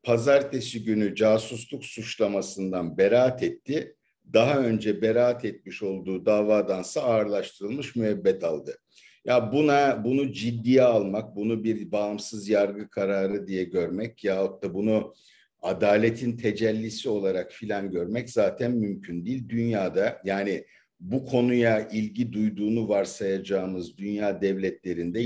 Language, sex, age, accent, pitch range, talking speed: Turkish, male, 60-79, native, 100-120 Hz, 110 wpm